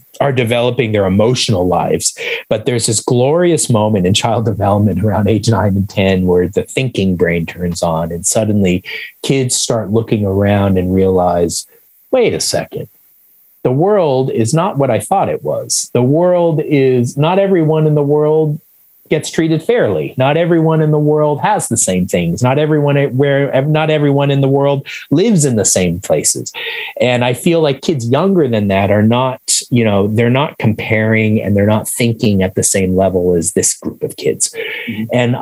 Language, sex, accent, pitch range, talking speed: English, male, American, 100-140 Hz, 180 wpm